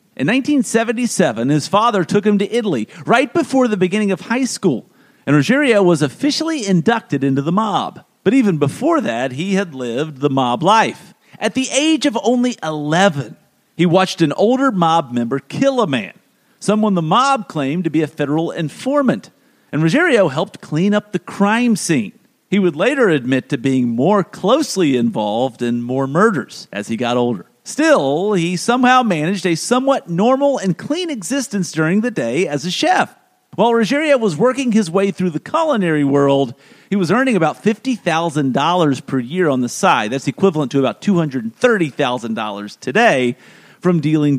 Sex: male